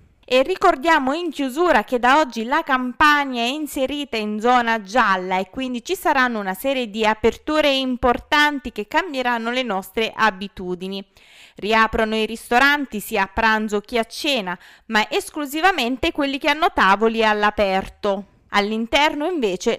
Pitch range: 205-295 Hz